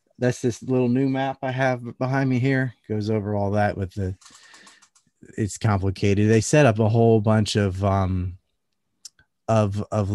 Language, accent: English, American